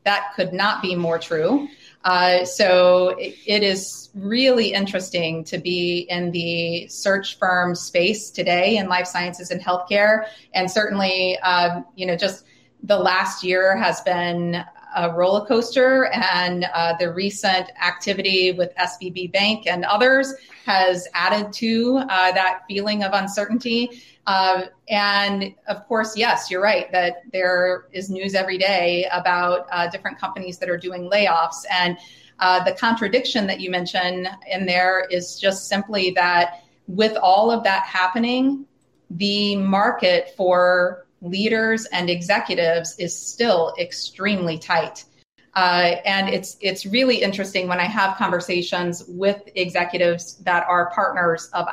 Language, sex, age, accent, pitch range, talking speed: English, female, 30-49, American, 180-205 Hz, 145 wpm